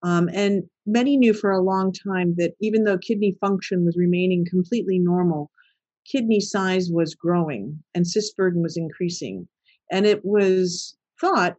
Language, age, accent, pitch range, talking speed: English, 50-69, American, 175-215 Hz, 155 wpm